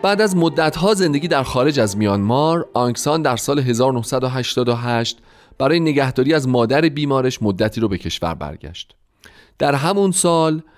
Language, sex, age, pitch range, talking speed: Persian, male, 30-49, 100-150 Hz, 140 wpm